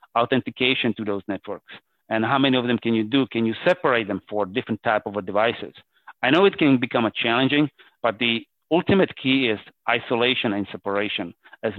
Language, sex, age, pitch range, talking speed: English, male, 40-59, 110-135 Hz, 190 wpm